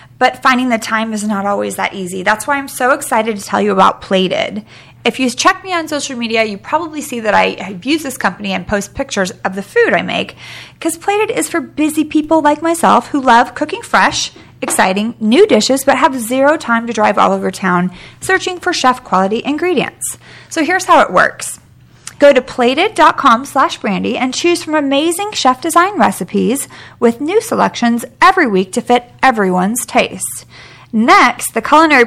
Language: English